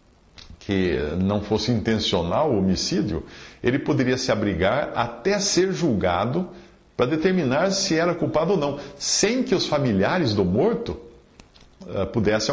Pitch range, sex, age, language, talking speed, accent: 95-150 Hz, male, 50-69, Portuguese, 130 wpm, Brazilian